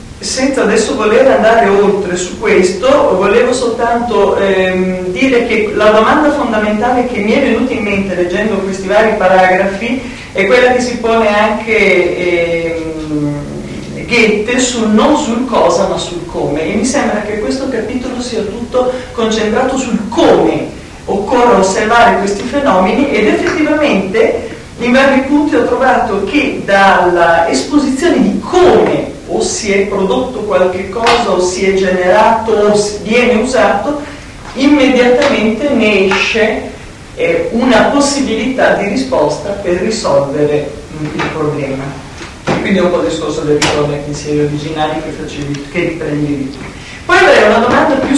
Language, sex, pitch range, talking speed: Italian, female, 180-245 Hz, 140 wpm